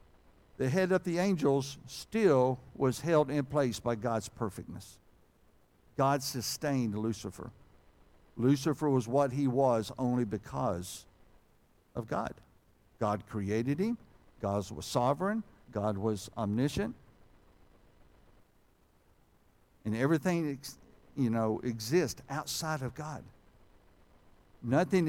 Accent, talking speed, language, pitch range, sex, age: American, 105 wpm, English, 110-160 Hz, male, 60-79